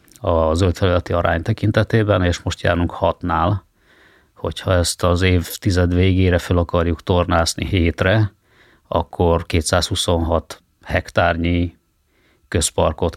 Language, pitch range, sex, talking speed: Hungarian, 85-100 Hz, male, 95 wpm